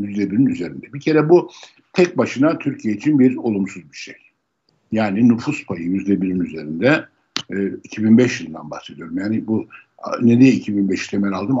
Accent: native